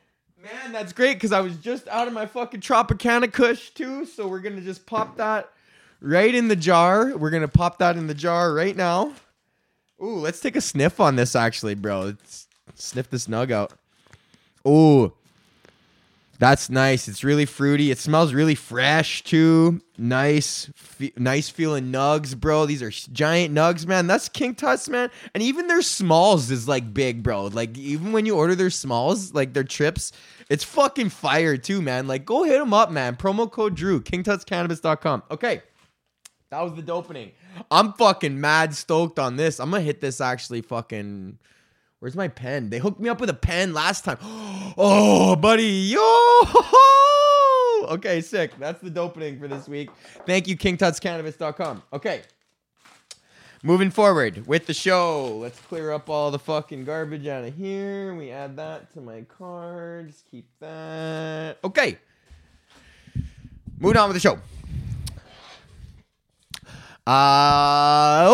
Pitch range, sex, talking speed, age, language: 140-205 Hz, male, 160 wpm, 20-39, English